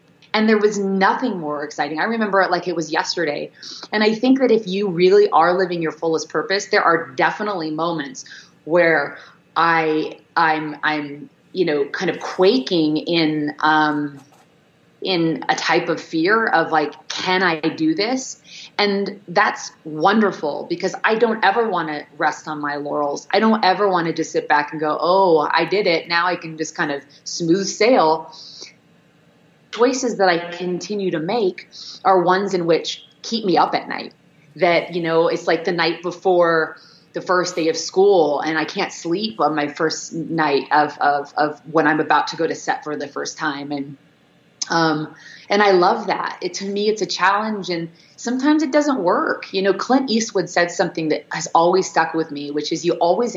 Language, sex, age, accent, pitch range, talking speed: English, female, 30-49, American, 155-195 Hz, 190 wpm